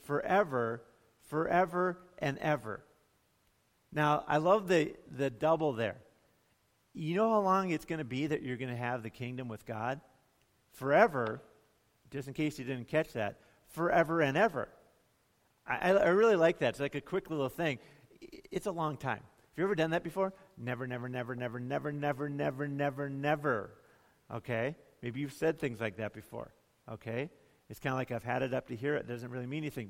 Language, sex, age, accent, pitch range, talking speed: English, male, 50-69, American, 130-185 Hz, 185 wpm